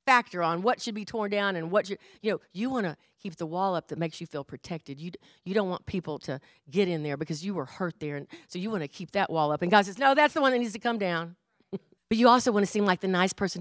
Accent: American